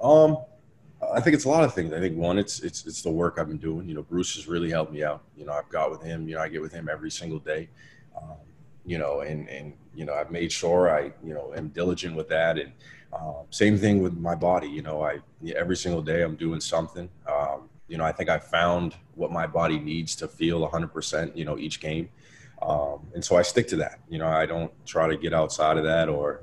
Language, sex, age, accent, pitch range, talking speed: English, male, 30-49, American, 80-90 Hz, 250 wpm